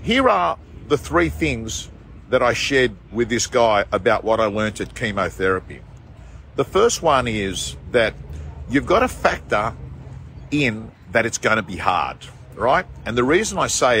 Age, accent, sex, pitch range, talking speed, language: 50-69, Australian, male, 95-120 Hz, 165 wpm, English